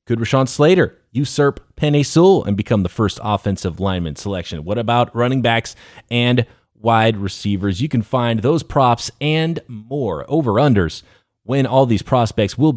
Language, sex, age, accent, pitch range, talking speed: English, male, 30-49, American, 105-155 Hz, 155 wpm